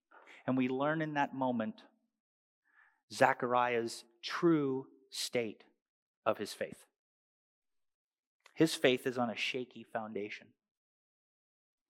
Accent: American